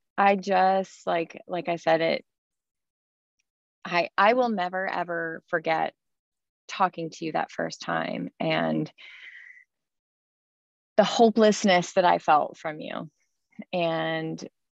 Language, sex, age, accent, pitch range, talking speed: English, female, 20-39, American, 160-200 Hz, 115 wpm